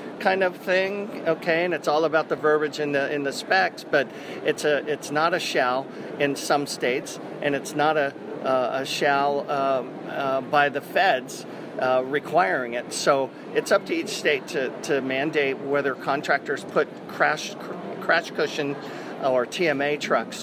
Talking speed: 170 wpm